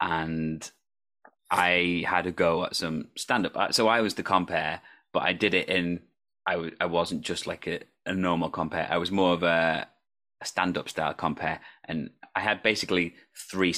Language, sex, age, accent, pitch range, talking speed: English, male, 20-39, British, 85-100 Hz, 185 wpm